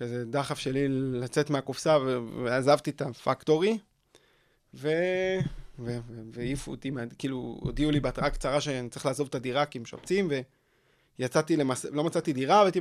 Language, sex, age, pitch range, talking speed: Hebrew, male, 20-39, 135-170 Hz, 145 wpm